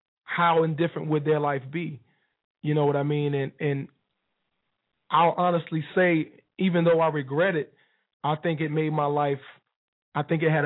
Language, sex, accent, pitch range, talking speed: English, male, American, 145-185 Hz, 175 wpm